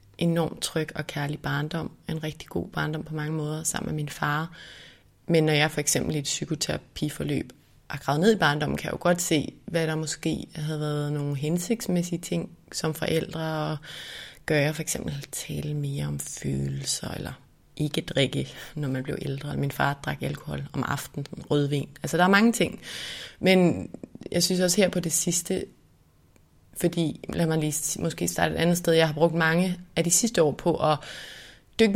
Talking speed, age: 185 wpm, 30-49